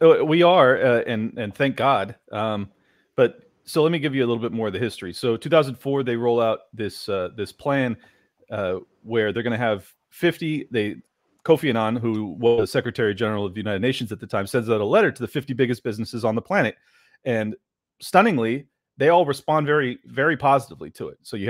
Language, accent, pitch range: English, American, 110-145 Hz